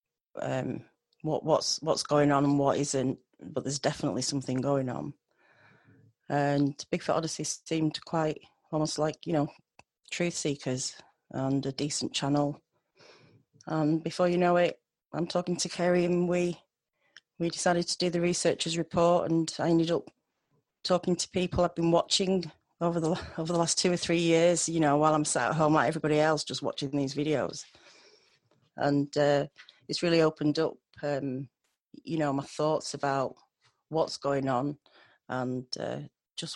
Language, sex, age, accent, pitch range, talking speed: English, female, 30-49, British, 140-170 Hz, 160 wpm